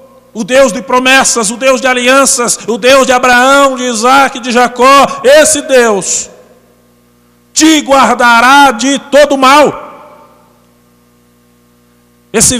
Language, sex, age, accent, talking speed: Portuguese, male, 50-69, Brazilian, 115 wpm